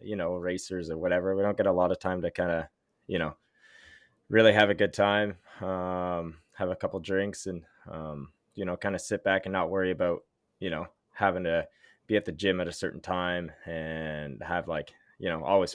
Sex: male